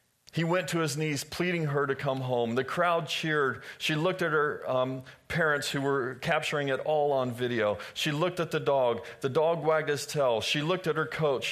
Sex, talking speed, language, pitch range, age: male, 215 wpm, English, 105-140 Hz, 40-59